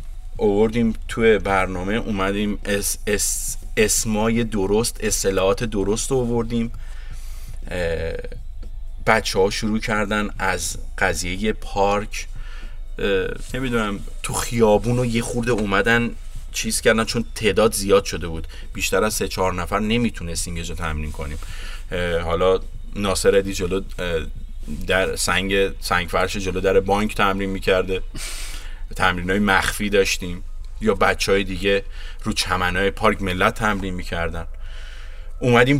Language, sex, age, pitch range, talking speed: Persian, male, 30-49, 85-110 Hz, 115 wpm